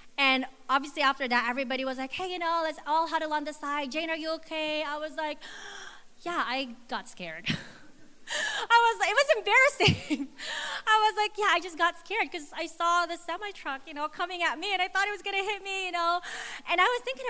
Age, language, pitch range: 30-49, English, 220-320 Hz